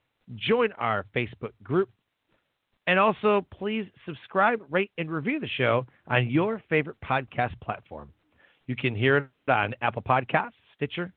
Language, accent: English, American